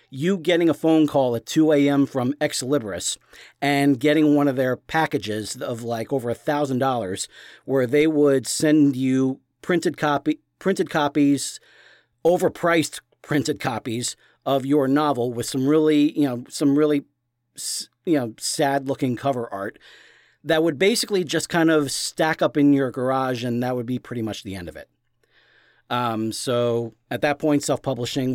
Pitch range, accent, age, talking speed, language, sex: 125-155 Hz, American, 40-59, 165 wpm, English, male